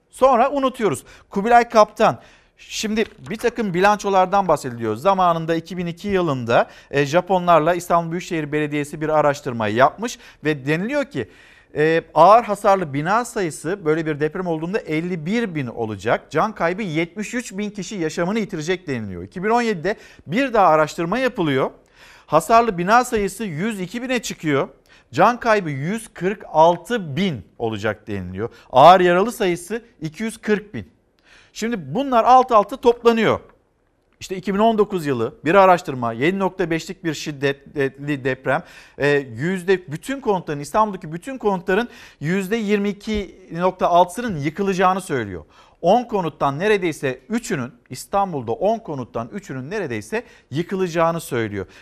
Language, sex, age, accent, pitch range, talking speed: Turkish, male, 50-69, native, 155-215 Hz, 105 wpm